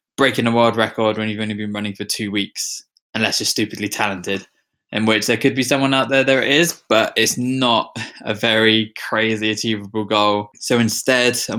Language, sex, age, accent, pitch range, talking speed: English, male, 20-39, British, 105-125 Hz, 195 wpm